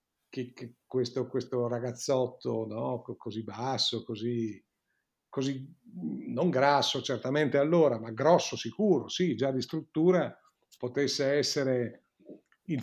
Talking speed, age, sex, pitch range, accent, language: 110 wpm, 50-69, male, 120-150 Hz, native, Italian